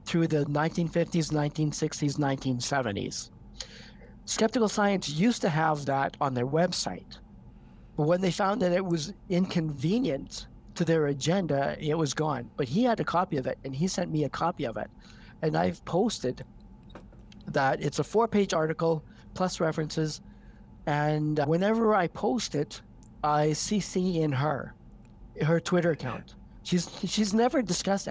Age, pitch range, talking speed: 50-69, 150-200 Hz, 145 wpm